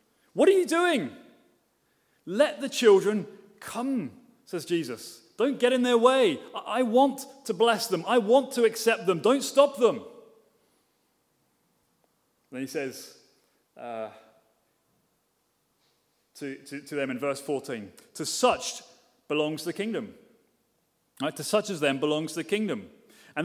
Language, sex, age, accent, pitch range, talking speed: English, male, 30-49, British, 165-230 Hz, 135 wpm